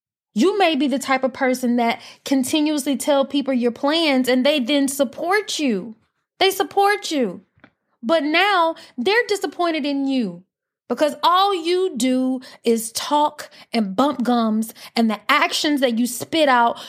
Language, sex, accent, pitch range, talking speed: English, female, American, 230-295 Hz, 155 wpm